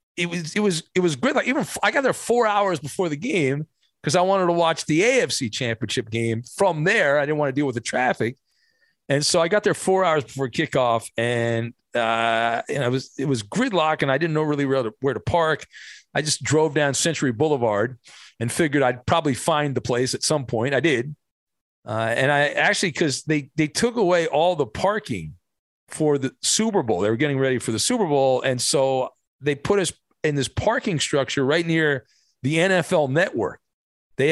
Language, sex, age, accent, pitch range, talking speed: English, male, 40-59, American, 125-165 Hz, 210 wpm